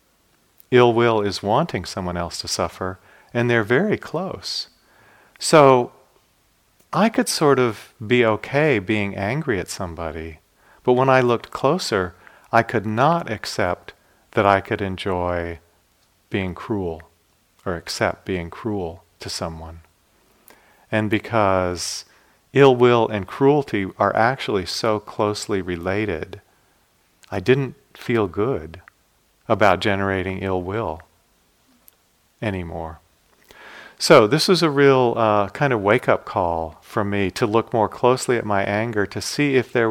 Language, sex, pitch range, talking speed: English, male, 90-115 Hz, 130 wpm